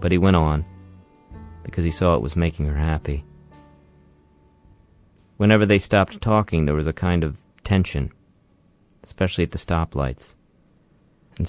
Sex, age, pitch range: male, 40-59, 75-95 Hz